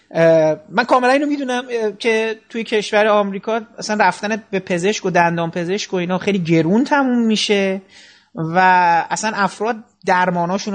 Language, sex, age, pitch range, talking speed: Persian, male, 30-49, 185-245 Hz, 140 wpm